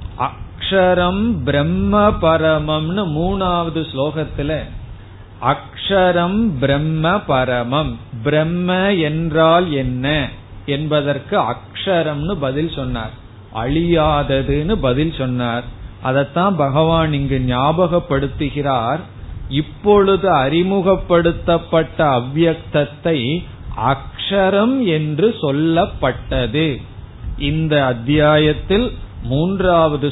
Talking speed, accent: 50 wpm, native